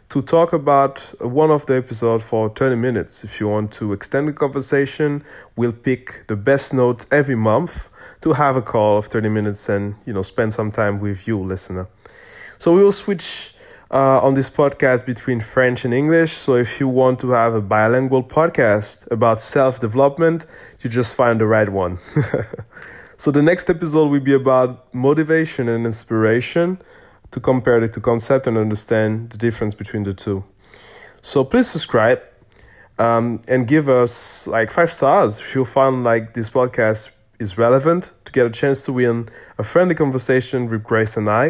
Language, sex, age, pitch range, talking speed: English, male, 20-39, 110-140 Hz, 175 wpm